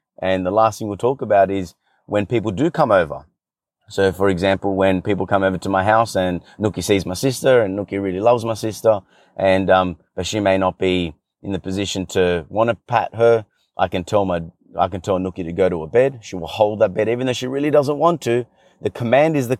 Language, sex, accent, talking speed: English, male, Australian, 240 wpm